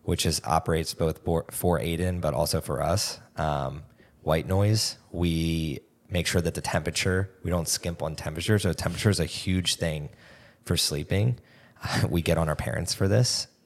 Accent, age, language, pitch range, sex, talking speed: American, 20-39, English, 80-100 Hz, male, 175 wpm